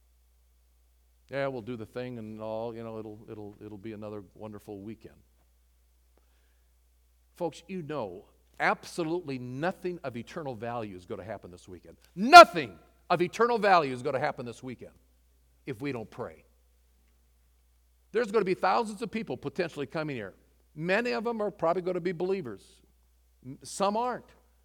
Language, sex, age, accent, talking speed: English, male, 50-69, American, 160 wpm